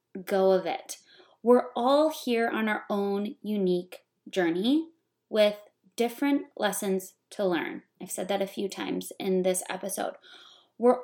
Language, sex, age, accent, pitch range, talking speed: English, female, 20-39, American, 200-240 Hz, 140 wpm